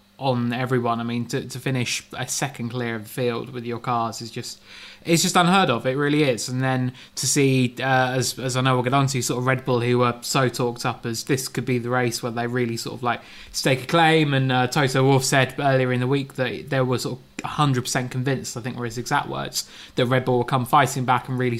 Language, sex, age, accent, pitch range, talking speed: English, male, 20-39, British, 125-140 Hz, 260 wpm